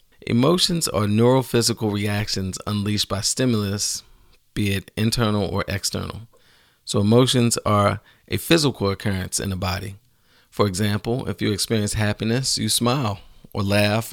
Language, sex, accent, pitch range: English, male, American, 95-115 Hz